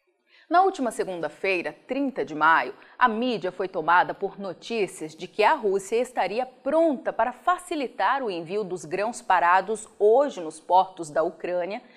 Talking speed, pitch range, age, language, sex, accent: 150 wpm, 190-295 Hz, 30-49, Portuguese, female, Brazilian